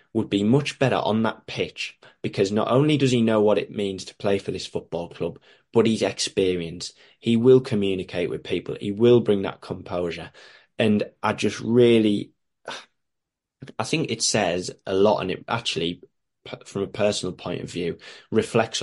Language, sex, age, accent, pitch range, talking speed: English, male, 20-39, British, 95-125 Hz, 175 wpm